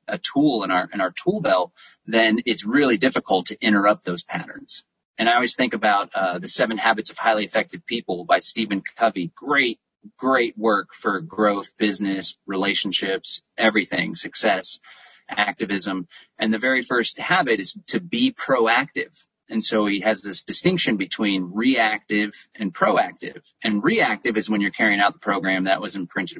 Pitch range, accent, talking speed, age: 100-115 Hz, American, 165 wpm, 30-49